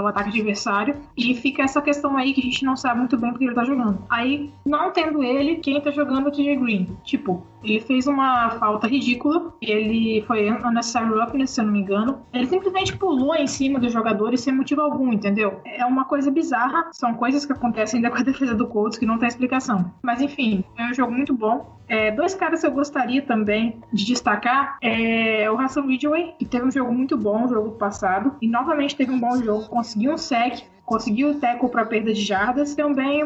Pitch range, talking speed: 225-285 Hz, 220 wpm